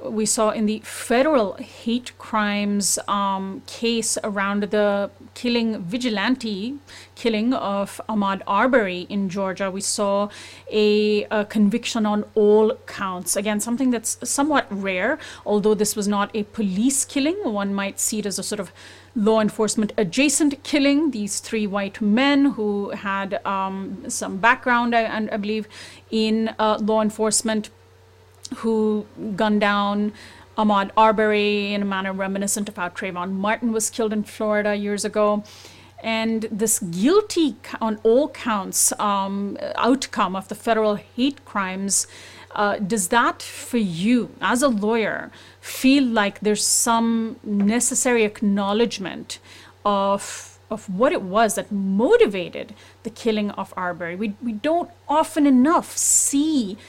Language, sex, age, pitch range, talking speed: English, female, 30-49, 200-235 Hz, 140 wpm